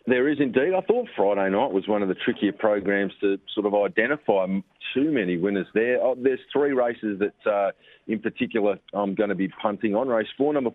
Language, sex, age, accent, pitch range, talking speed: English, male, 40-59, Australian, 95-120 Hz, 205 wpm